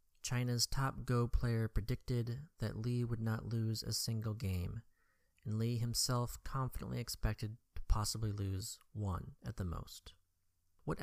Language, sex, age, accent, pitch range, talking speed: English, male, 30-49, American, 100-125 Hz, 140 wpm